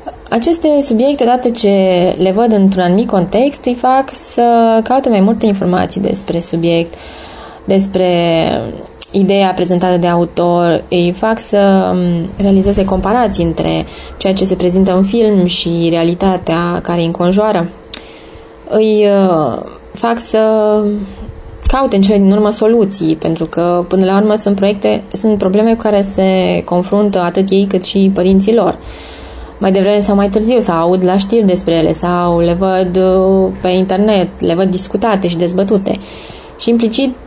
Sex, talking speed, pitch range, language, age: female, 150 wpm, 180-220 Hz, English, 20-39